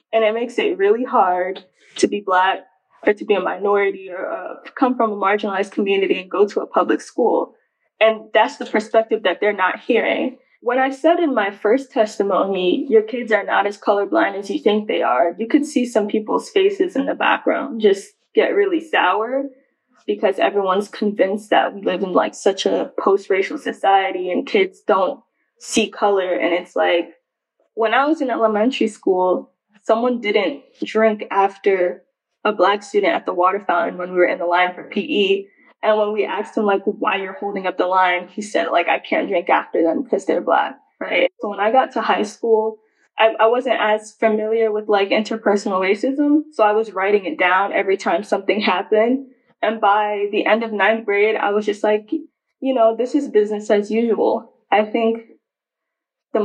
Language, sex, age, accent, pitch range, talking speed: English, female, 10-29, American, 200-260 Hz, 195 wpm